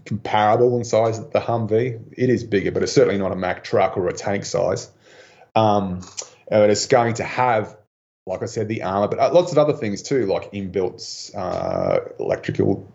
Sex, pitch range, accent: male, 105-125 Hz, Australian